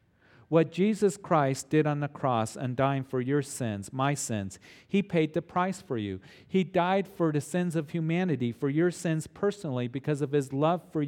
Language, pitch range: English, 130-170 Hz